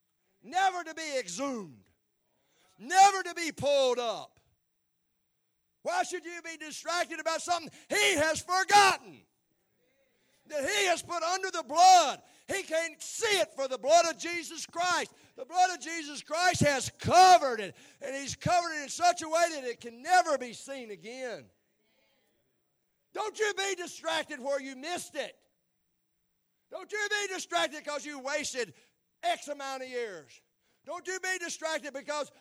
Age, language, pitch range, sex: 50-69, English, 255-350 Hz, male